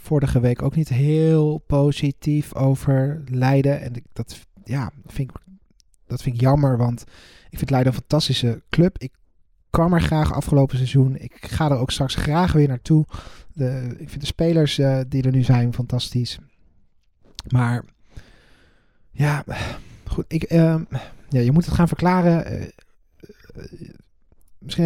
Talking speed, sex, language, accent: 150 wpm, male, Dutch, Dutch